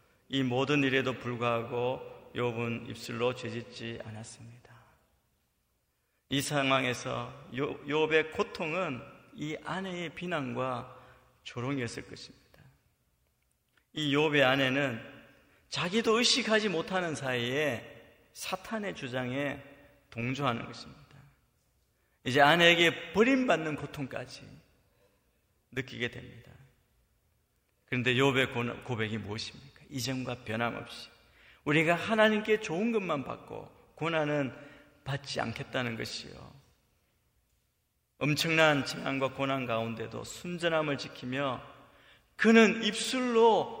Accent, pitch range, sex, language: native, 120-175 Hz, male, Korean